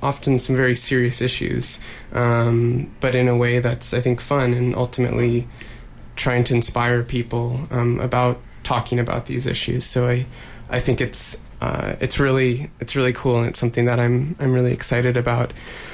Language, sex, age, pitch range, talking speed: English, male, 20-39, 120-130 Hz, 175 wpm